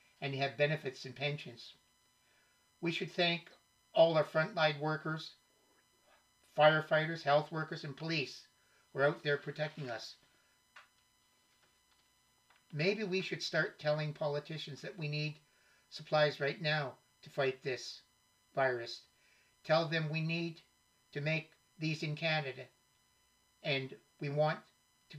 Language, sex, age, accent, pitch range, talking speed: English, male, 60-79, American, 140-165 Hz, 125 wpm